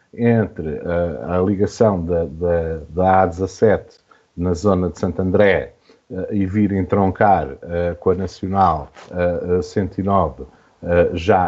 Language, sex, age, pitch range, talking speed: Portuguese, male, 50-69, 85-120 Hz, 140 wpm